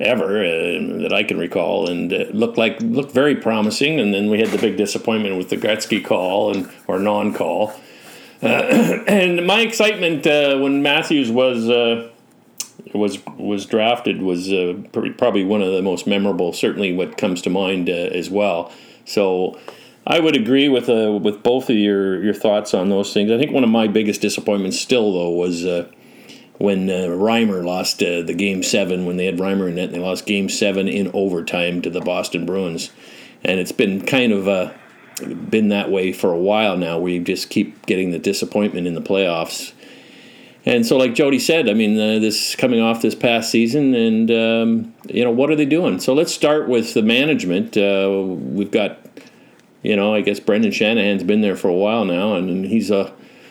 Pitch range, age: 95-130 Hz, 50-69